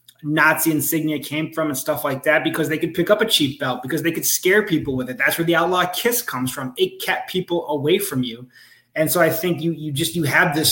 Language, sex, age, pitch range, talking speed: English, male, 20-39, 140-170 Hz, 260 wpm